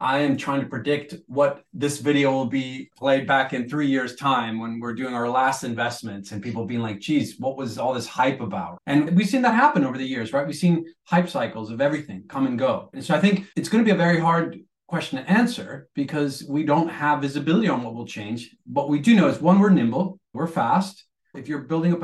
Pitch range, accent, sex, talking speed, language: 125-165 Hz, American, male, 240 wpm, English